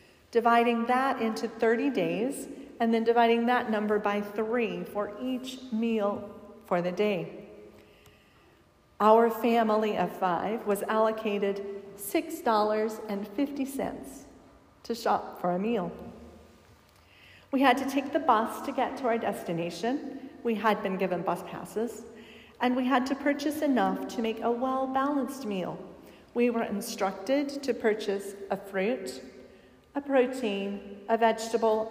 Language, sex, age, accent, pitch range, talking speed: English, female, 40-59, American, 200-245 Hz, 130 wpm